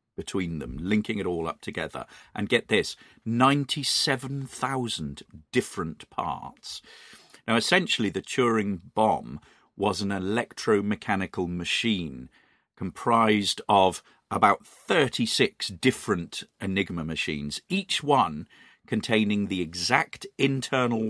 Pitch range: 90-130 Hz